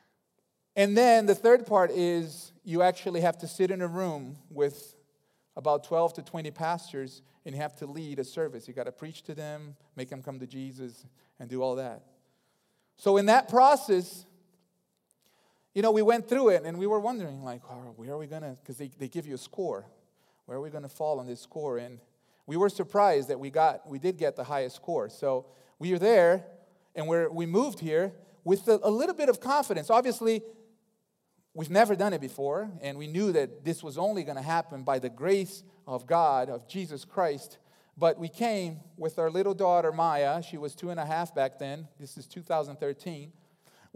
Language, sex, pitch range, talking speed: English, male, 140-185 Hz, 205 wpm